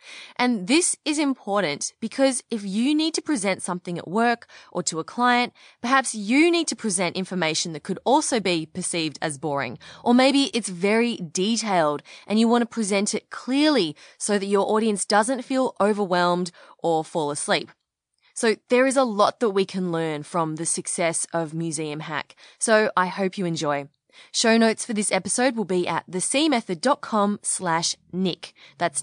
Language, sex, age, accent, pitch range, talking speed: English, female, 20-39, Australian, 170-240 Hz, 175 wpm